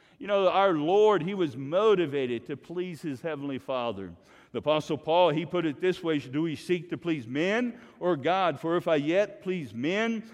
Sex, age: male, 50-69